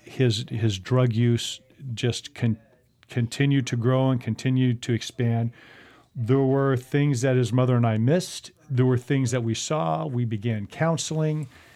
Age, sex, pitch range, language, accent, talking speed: 50-69, male, 115-135 Hz, English, American, 160 wpm